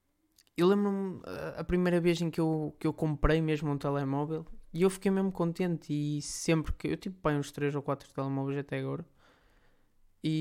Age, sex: 20-39, male